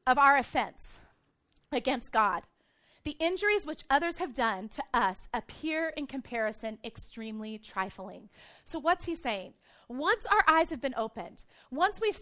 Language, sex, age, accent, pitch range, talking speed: English, female, 30-49, American, 235-395 Hz, 145 wpm